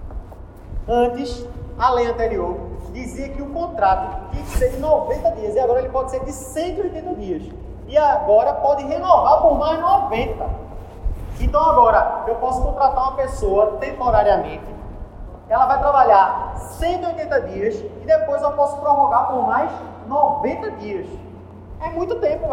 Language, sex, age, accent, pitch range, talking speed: Portuguese, male, 30-49, Brazilian, 225-320 Hz, 145 wpm